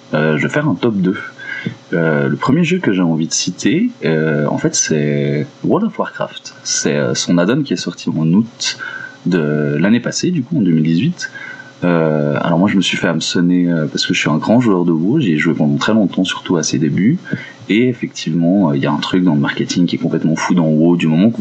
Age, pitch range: 30-49, 80-100 Hz